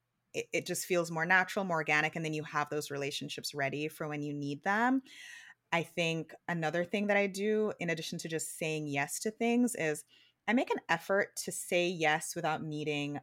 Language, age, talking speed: English, 20-39, 200 wpm